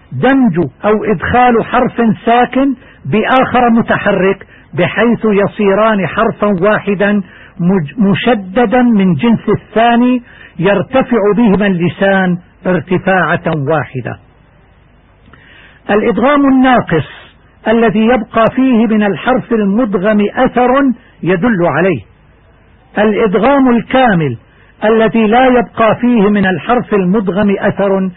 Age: 60-79